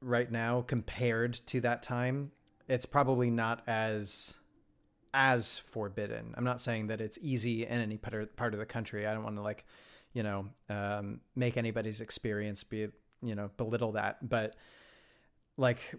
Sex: male